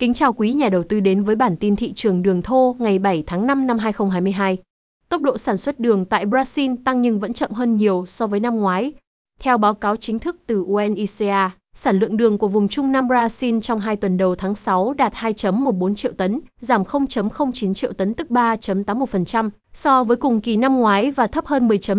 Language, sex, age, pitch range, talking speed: Vietnamese, female, 20-39, 195-245 Hz, 210 wpm